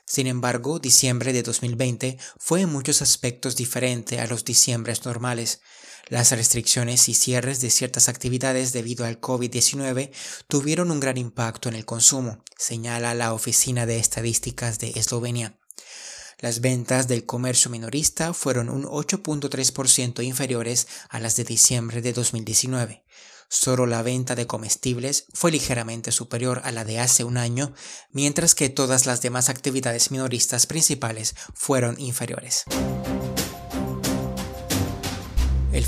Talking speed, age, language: 130 wpm, 20-39, Spanish